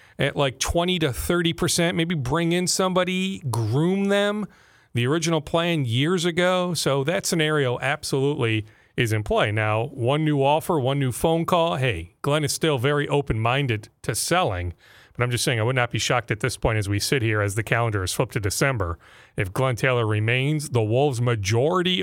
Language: English